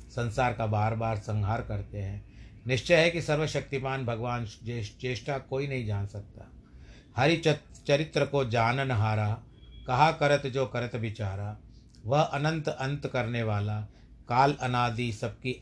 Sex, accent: male, native